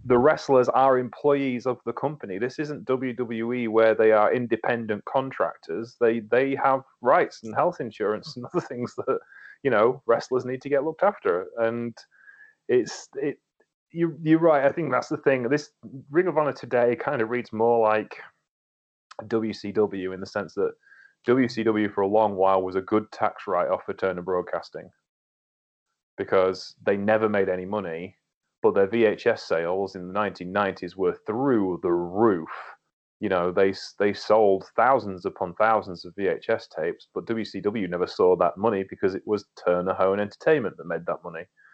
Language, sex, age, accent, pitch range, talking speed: English, male, 30-49, British, 100-135 Hz, 170 wpm